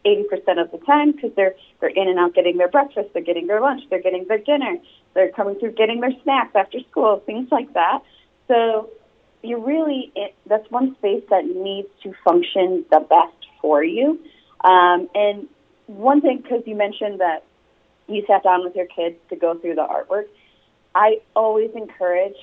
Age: 30-49